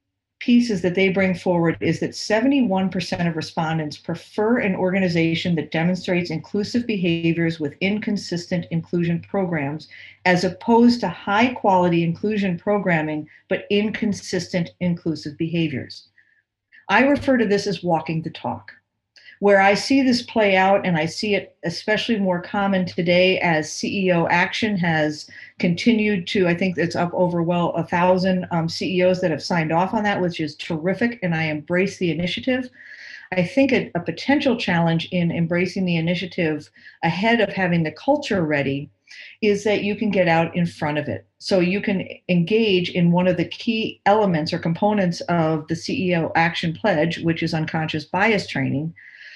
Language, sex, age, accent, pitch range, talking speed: English, female, 50-69, American, 165-205 Hz, 160 wpm